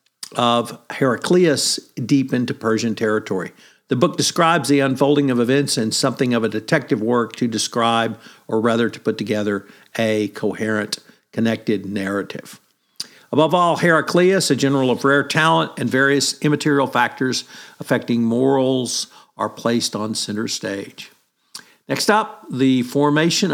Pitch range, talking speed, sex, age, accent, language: 120-150 Hz, 135 wpm, male, 50-69, American, English